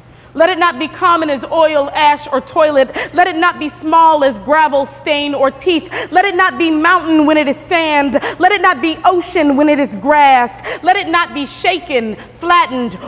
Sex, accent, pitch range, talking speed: female, American, 280-350 Hz, 200 wpm